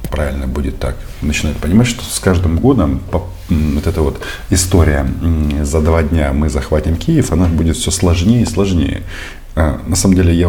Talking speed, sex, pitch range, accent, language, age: 165 wpm, male, 75-95 Hz, native, Russian, 40-59